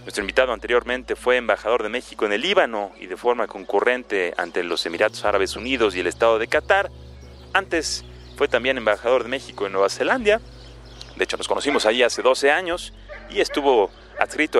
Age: 30-49